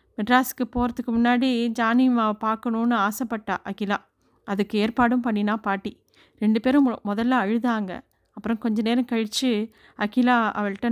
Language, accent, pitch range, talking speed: Tamil, native, 205-240 Hz, 115 wpm